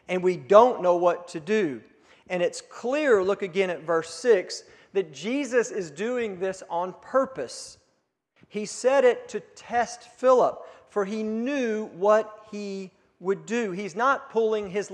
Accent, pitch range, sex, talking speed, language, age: American, 180-240 Hz, male, 155 wpm, English, 40-59